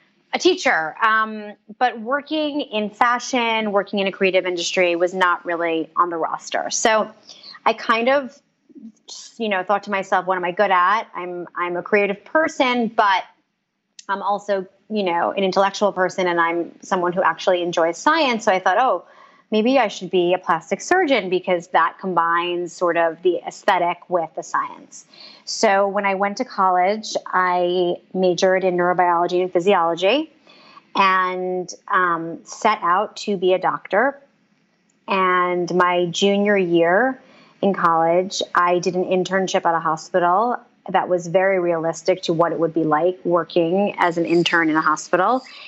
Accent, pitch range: American, 175-215 Hz